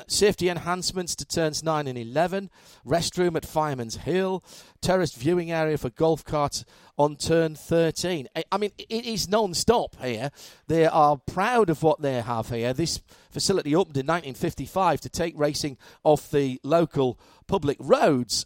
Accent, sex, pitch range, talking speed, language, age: British, male, 140-185 Hz, 155 wpm, English, 40-59